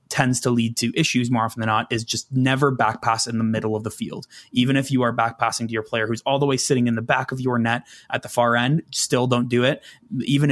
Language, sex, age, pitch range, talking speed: English, male, 20-39, 110-125 Hz, 270 wpm